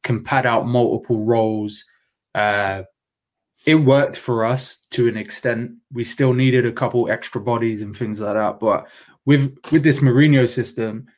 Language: English